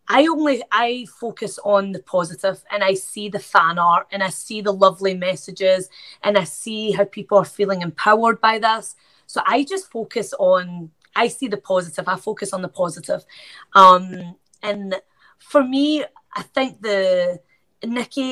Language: English